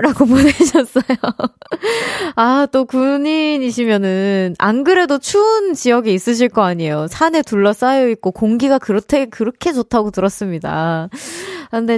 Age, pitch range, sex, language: 20-39, 195-280 Hz, female, Korean